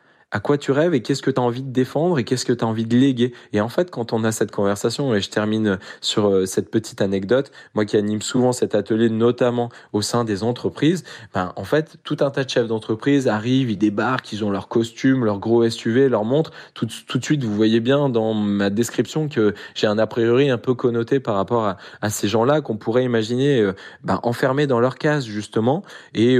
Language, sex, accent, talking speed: French, male, French, 230 wpm